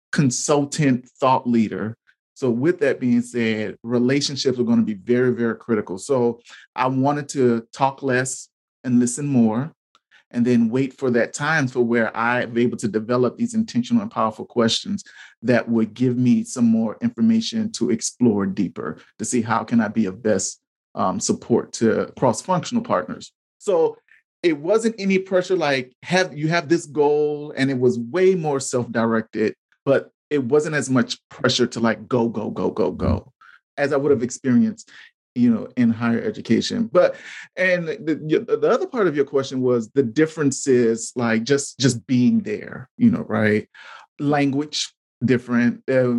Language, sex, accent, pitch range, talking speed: English, male, American, 120-185 Hz, 170 wpm